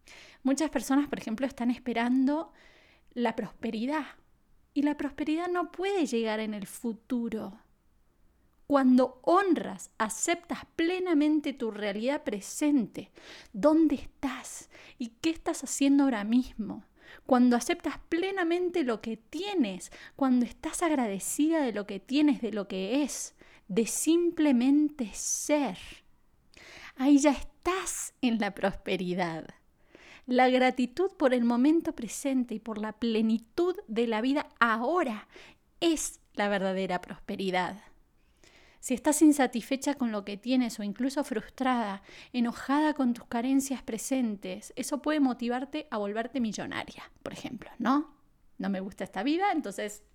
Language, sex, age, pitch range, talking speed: Spanish, female, 20-39, 225-295 Hz, 125 wpm